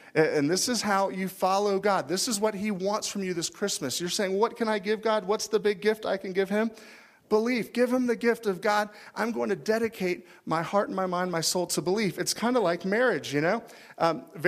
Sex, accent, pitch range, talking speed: male, American, 155-210 Hz, 245 wpm